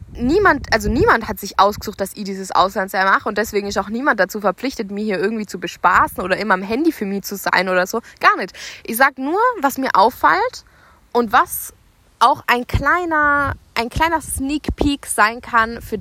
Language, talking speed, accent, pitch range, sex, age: German, 200 wpm, German, 200-265 Hz, female, 20-39